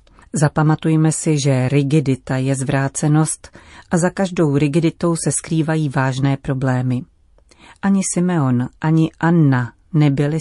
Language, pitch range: Czech, 135-165 Hz